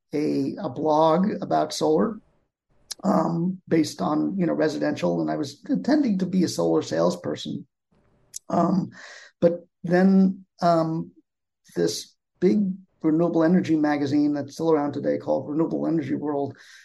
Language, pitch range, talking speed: English, 145-180 Hz, 130 wpm